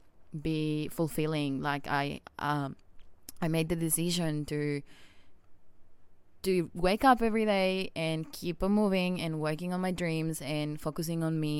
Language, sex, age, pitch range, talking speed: English, female, 20-39, 145-165 Hz, 145 wpm